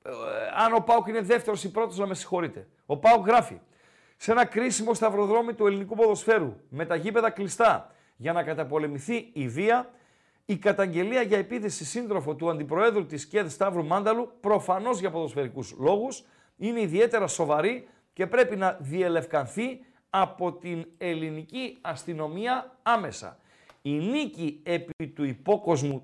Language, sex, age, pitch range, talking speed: Greek, male, 40-59, 160-230 Hz, 145 wpm